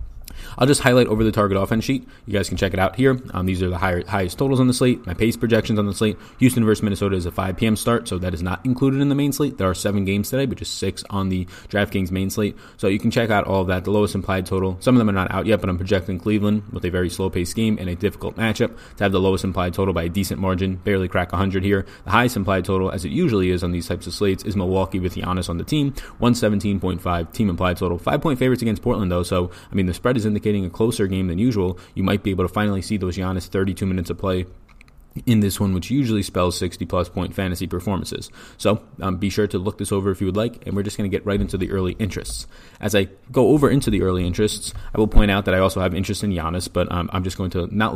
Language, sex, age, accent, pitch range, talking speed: English, male, 20-39, American, 90-110 Hz, 280 wpm